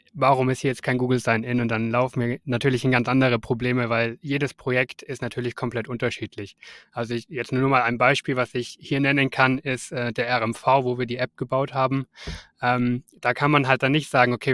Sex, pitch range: male, 120-135 Hz